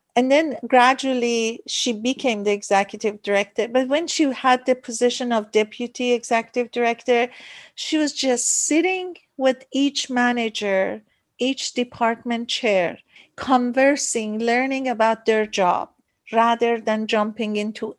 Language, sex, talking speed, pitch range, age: English, female, 125 wpm, 220-265 Hz, 50-69